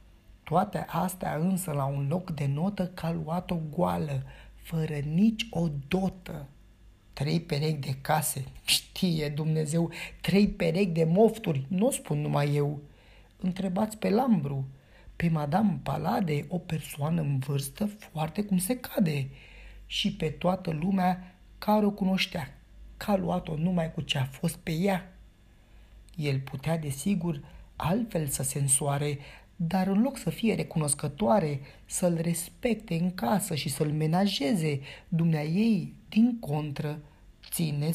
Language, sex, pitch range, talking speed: Romanian, male, 145-195 Hz, 135 wpm